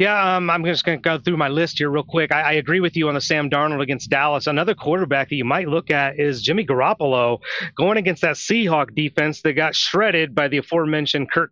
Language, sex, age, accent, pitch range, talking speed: English, male, 30-49, American, 145-185 Hz, 240 wpm